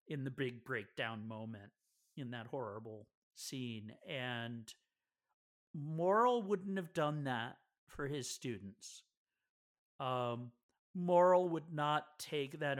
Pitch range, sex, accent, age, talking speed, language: 125-160 Hz, male, American, 50-69, 115 wpm, English